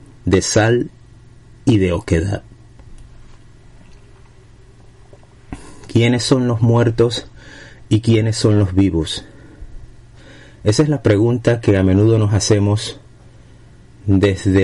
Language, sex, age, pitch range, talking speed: Spanish, male, 30-49, 95-120 Hz, 100 wpm